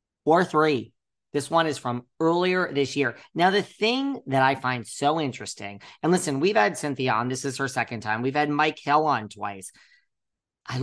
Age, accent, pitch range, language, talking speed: 40-59, American, 120-150 Hz, English, 195 wpm